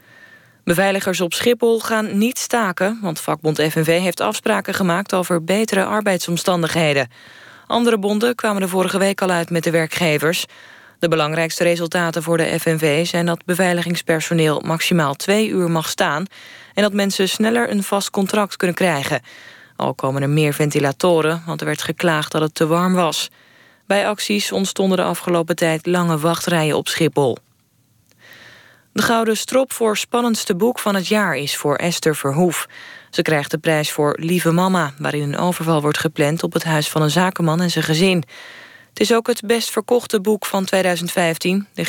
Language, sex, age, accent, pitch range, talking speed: Dutch, female, 20-39, Dutch, 160-205 Hz, 170 wpm